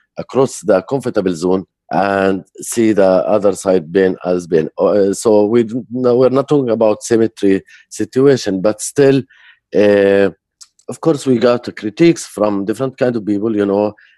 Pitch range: 90-110 Hz